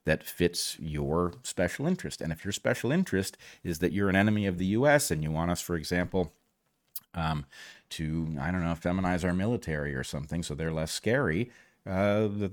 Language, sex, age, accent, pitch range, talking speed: English, male, 40-59, American, 80-105 Hz, 190 wpm